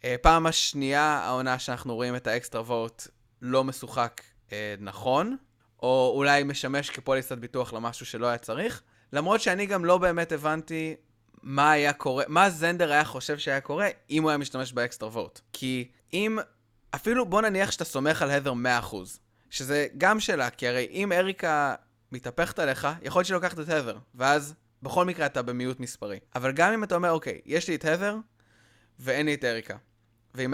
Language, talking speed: Hebrew, 175 wpm